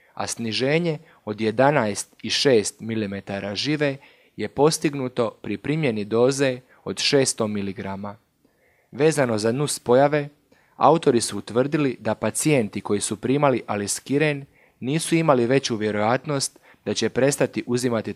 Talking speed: 120 wpm